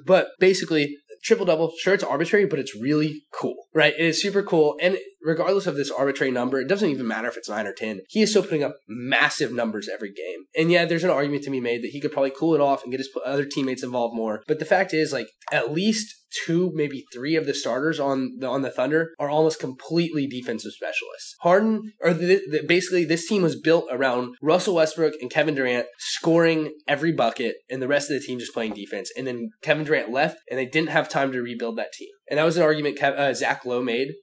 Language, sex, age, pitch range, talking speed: English, male, 20-39, 135-170 Hz, 235 wpm